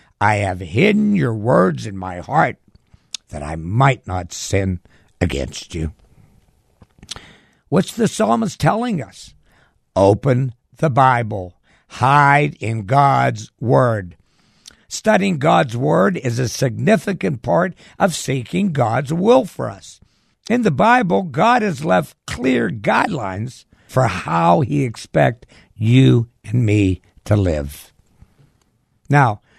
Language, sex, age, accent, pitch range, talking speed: English, male, 60-79, American, 100-150 Hz, 120 wpm